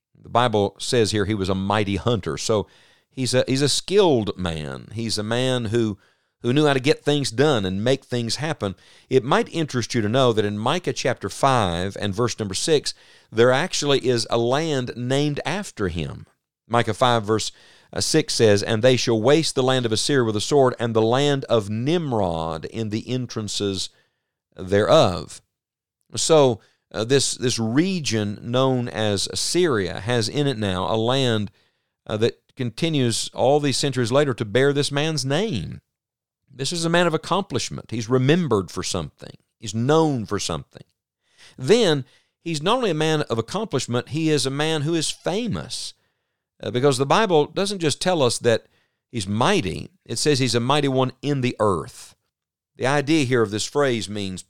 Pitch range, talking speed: 110-145 Hz, 175 wpm